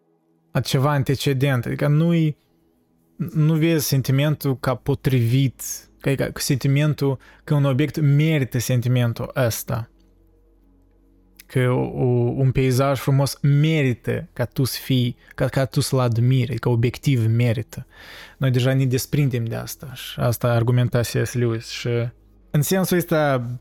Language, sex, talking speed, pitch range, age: Romanian, male, 130 wpm, 115-140 Hz, 20-39